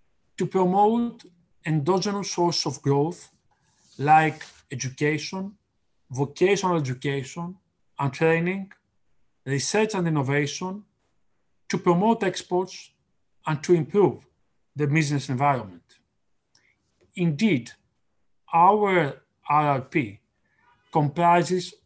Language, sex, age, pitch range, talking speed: English, male, 40-59, 145-185 Hz, 75 wpm